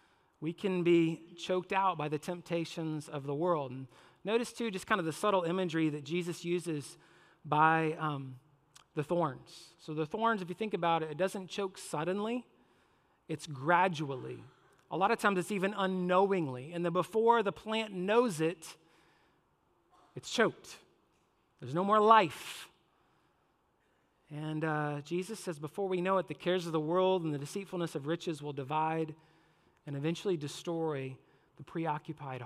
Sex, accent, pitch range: male, American, 155-200 Hz